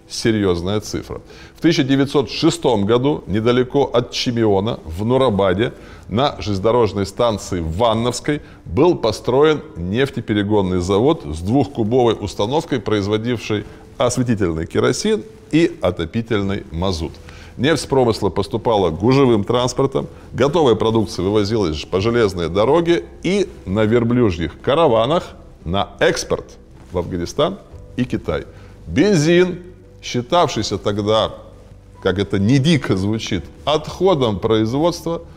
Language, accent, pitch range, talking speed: Russian, native, 95-135 Hz, 100 wpm